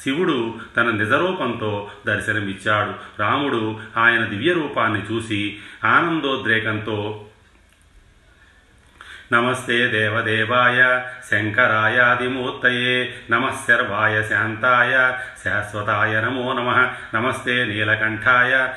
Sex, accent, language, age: male, native, Telugu, 40-59